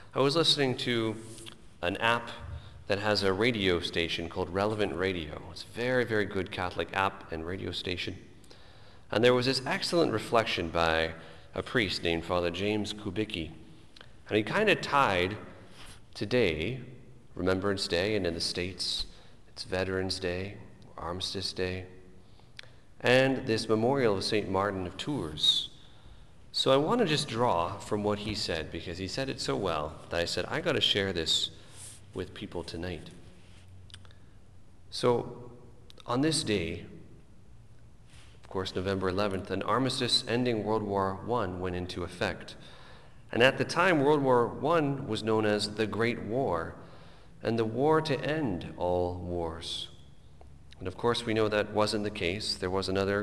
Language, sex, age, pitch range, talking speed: English, male, 40-59, 90-115 Hz, 155 wpm